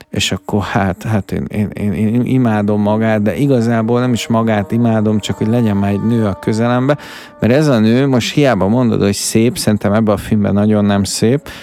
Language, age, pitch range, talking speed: Hungarian, 50-69, 105-120 Hz, 205 wpm